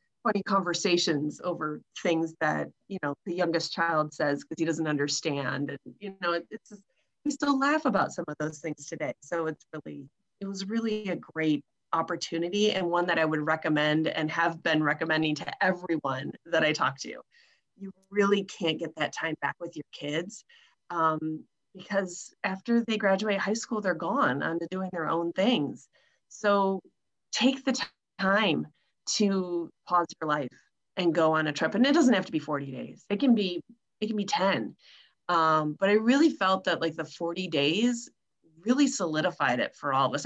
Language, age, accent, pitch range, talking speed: English, 30-49, American, 155-205 Hz, 185 wpm